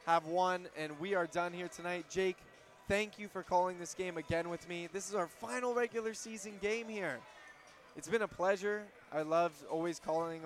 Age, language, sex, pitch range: 20-39, English, male, 155-190 Hz